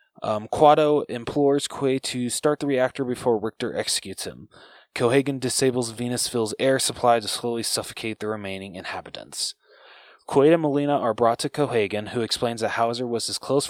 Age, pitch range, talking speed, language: 20-39, 110-135 Hz, 160 wpm, English